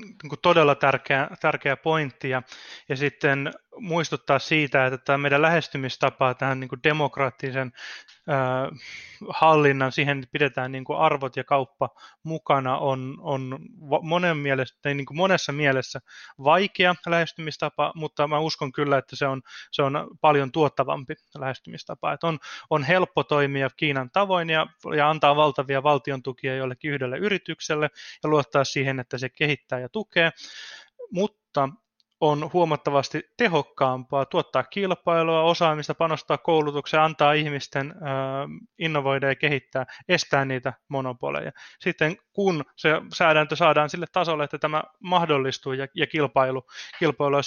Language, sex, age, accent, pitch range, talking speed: Finnish, male, 20-39, native, 135-160 Hz, 125 wpm